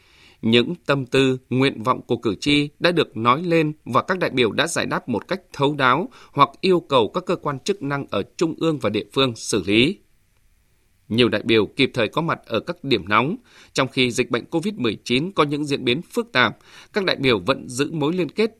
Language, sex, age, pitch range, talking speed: Vietnamese, male, 20-39, 110-150 Hz, 225 wpm